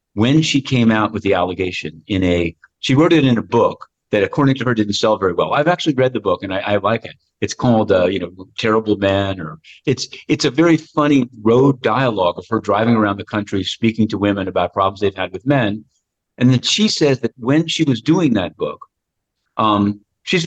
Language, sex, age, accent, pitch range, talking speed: English, male, 50-69, American, 100-140 Hz, 225 wpm